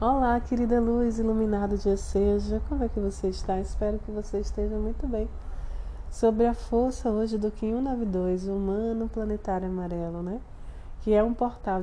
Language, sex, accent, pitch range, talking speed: Portuguese, female, Brazilian, 185-220 Hz, 165 wpm